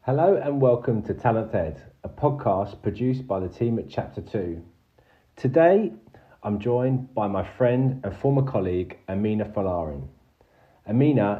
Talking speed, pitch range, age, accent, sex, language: 140 wpm, 90-125 Hz, 40-59, British, male, English